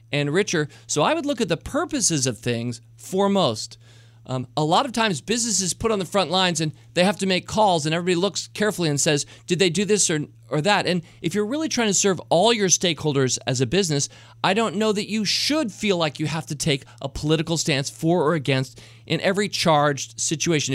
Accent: American